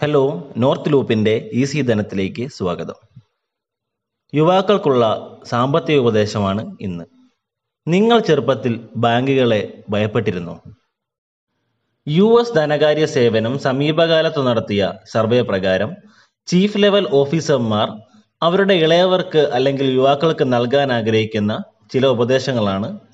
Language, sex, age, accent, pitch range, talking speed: Malayalam, male, 30-49, native, 115-160 Hz, 85 wpm